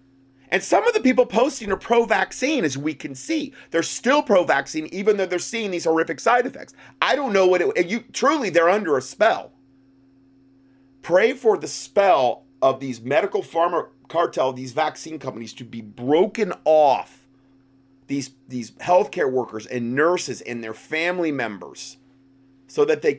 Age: 30-49